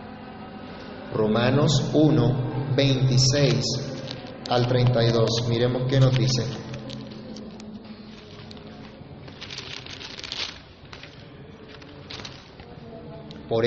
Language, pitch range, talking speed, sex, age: Spanish, 115-150 Hz, 45 wpm, male, 30-49